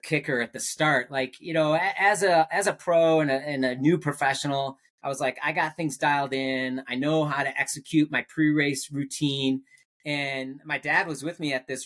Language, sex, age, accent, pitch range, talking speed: English, male, 30-49, American, 130-155 Hz, 205 wpm